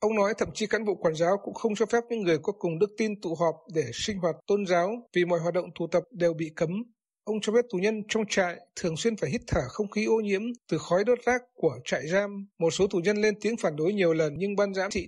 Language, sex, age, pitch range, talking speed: Vietnamese, male, 60-79, 170-215 Hz, 285 wpm